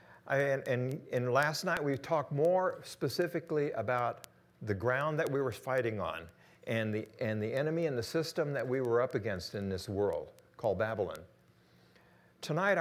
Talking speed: 160 wpm